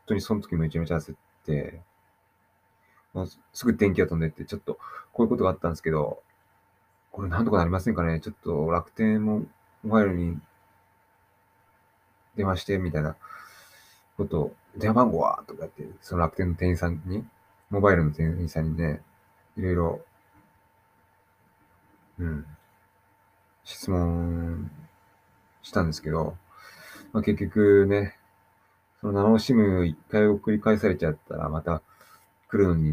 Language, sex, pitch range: Japanese, male, 80-100 Hz